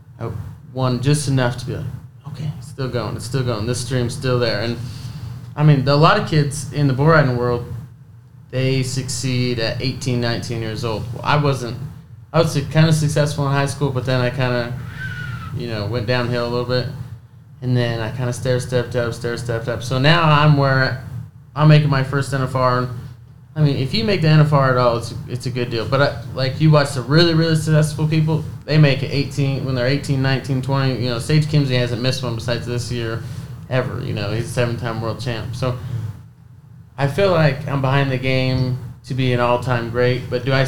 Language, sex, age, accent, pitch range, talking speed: English, male, 20-39, American, 120-140 Hz, 210 wpm